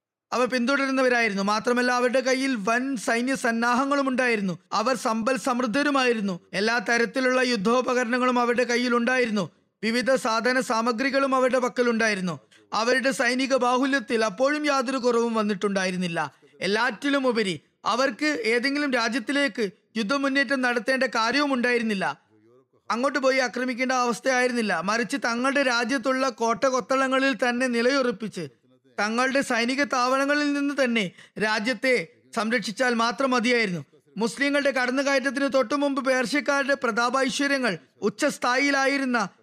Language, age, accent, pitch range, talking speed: Malayalam, 20-39, native, 230-270 Hz, 95 wpm